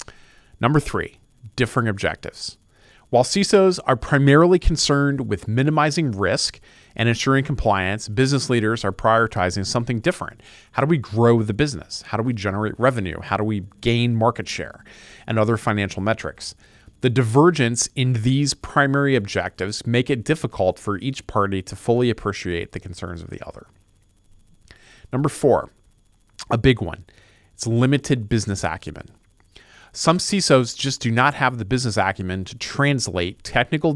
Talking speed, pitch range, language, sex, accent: 145 wpm, 100-130 Hz, English, male, American